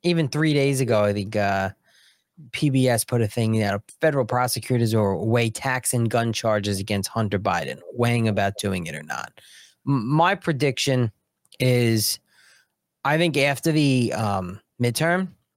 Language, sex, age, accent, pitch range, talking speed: English, male, 30-49, American, 110-135 Hz, 145 wpm